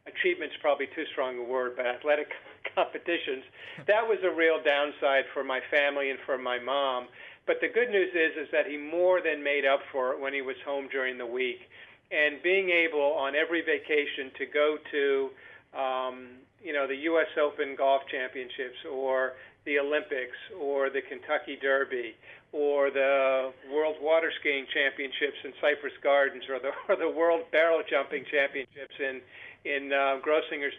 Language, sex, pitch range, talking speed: English, male, 140-165 Hz, 170 wpm